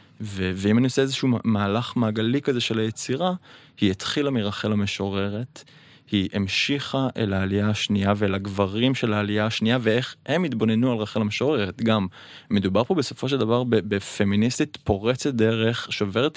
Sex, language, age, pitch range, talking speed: male, Hebrew, 20-39, 100-130 Hz, 145 wpm